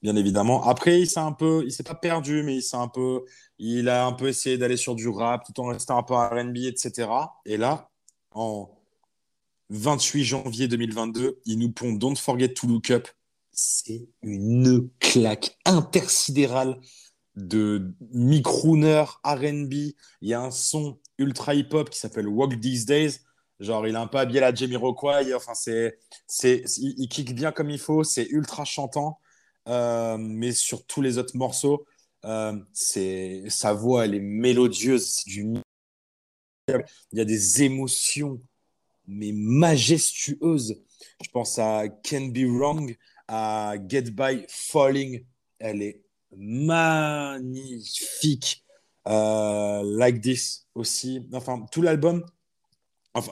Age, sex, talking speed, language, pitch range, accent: 30-49, male, 145 wpm, French, 115-145 Hz, French